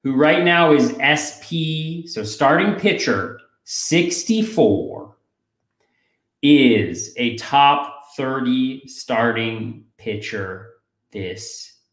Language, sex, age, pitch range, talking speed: English, male, 30-49, 120-175 Hz, 80 wpm